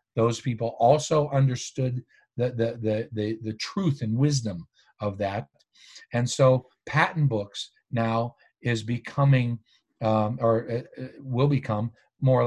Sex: male